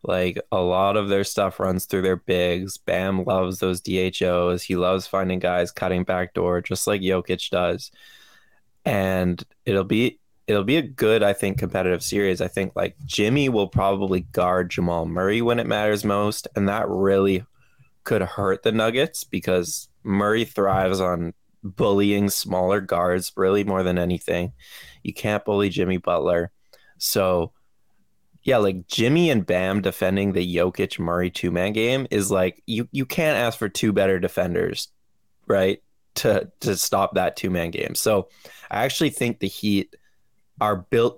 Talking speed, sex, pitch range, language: 160 wpm, male, 90-105 Hz, English